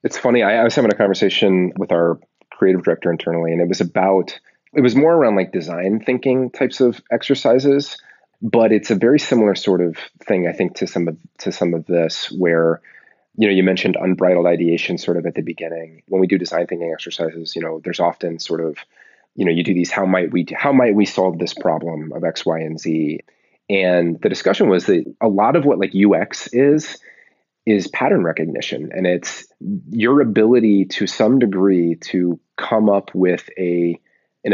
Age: 30-49